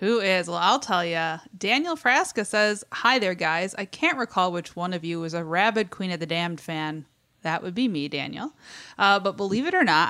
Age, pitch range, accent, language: 30-49, 175-235 Hz, American, English